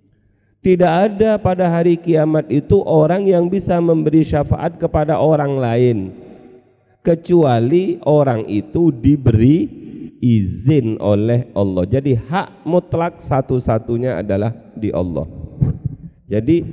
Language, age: Indonesian, 40-59